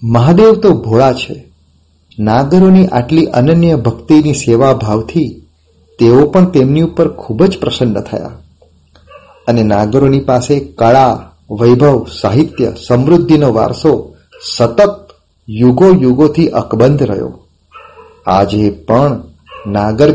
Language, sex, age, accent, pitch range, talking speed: Gujarati, male, 40-59, native, 115-170 Hz, 100 wpm